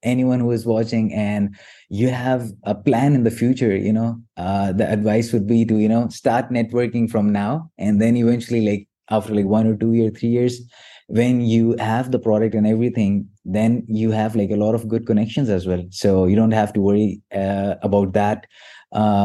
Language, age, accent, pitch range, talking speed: English, 20-39, Indian, 110-140 Hz, 205 wpm